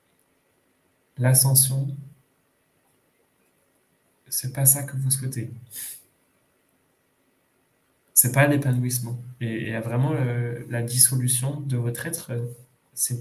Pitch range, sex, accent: 120-135 Hz, male, French